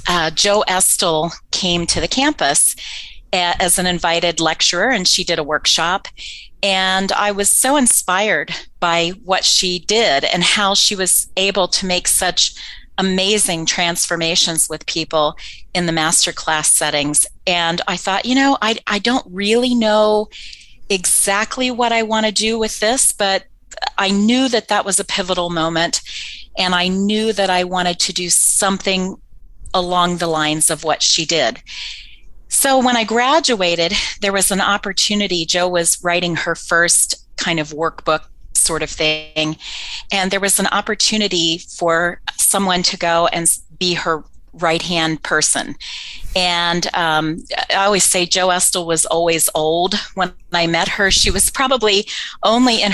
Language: English